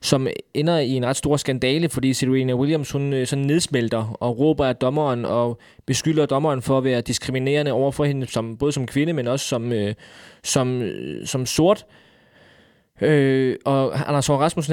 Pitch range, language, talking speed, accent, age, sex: 125-150 Hz, Danish, 180 wpm, native, 20-39, male